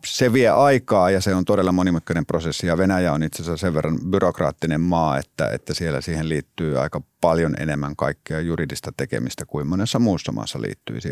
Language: Finnish